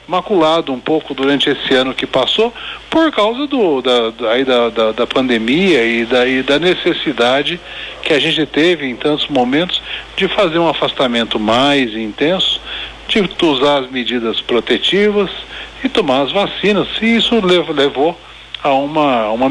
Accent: Brazilian